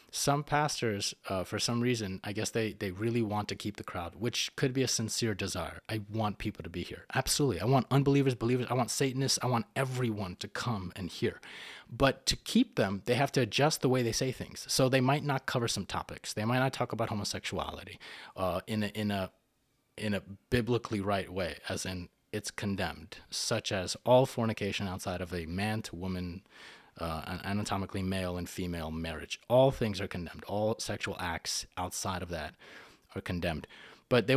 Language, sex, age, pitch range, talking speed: English, male, 30-49, 95-125 Hz, 195 wpm